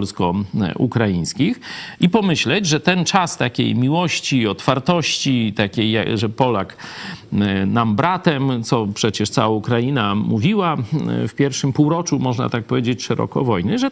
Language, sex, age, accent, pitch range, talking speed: Polish, male, 50-69, native, 115-165 Hz, 120 wpm